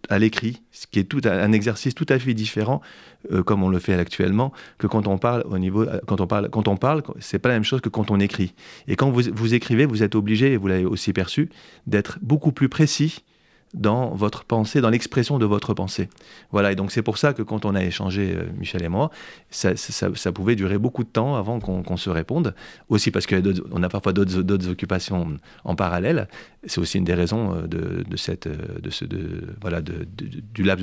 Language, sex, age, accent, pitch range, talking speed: French, male, 30-49, French, 100-125 Hz, 235 wpm